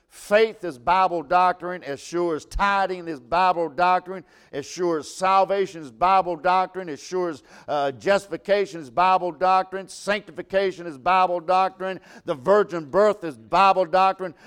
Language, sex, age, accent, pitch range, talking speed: English, male, 50-69, American, 165-210 Hz, 150 wpm